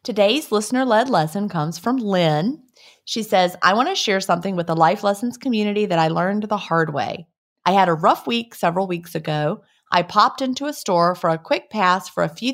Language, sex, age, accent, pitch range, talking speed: English, female, 30-49, American, 165-220 Hz, 215 wpm